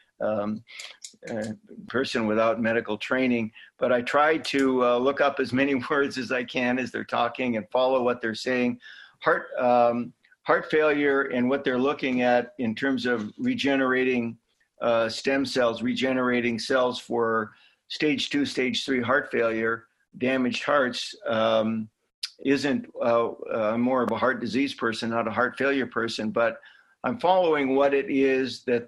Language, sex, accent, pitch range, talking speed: English, male, American, 115-135 Hz, 160 wpm